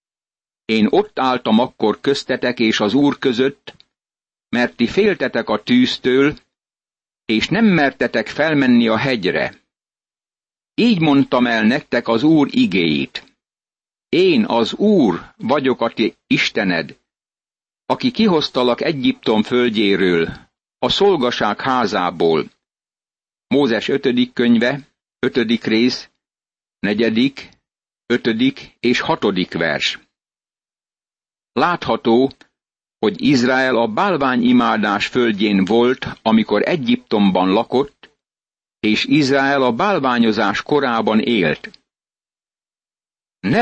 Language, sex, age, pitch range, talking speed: Hungarian, male, 60-79, 115-140 Hz, 95 wpm